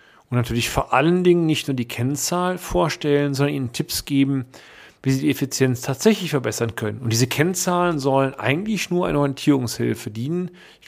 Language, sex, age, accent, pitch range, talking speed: German, male, 40-59, German, 130-165 Hz, 170 wpm